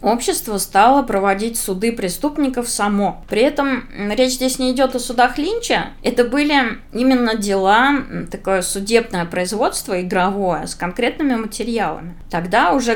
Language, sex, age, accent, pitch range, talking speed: Russian, female, 20-39, native, 170-240 Hz, 130 wpm